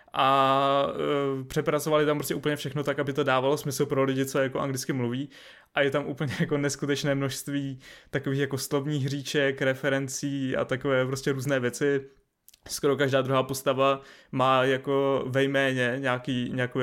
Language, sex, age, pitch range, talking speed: Czech, male, 20-39, 130-140 Hz, 155 wpm